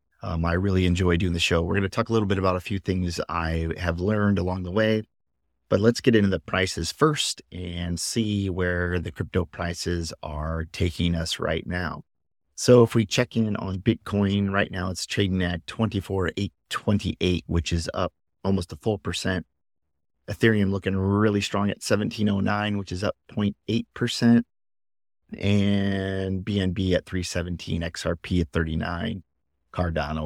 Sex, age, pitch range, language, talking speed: male, 30-49, 80-100 Hz, English, 160 wpm